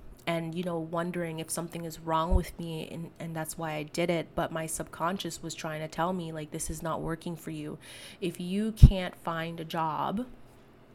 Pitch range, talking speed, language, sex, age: 165-205 Hz, 210 wpm, English, female, 20-39